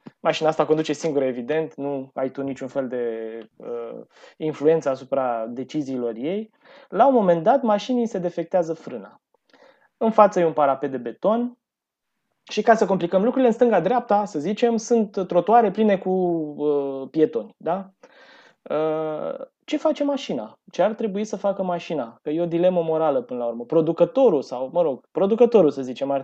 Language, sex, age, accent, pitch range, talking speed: Romanian, male, 20-39, native, 140-190 Hz, 165 wpm